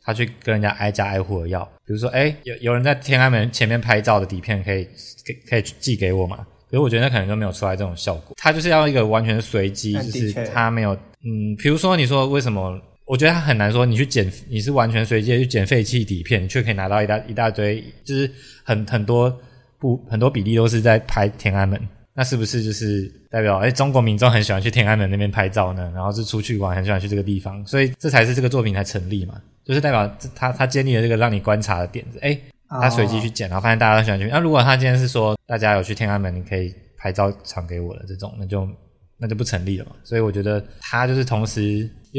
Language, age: Chinese, 20-39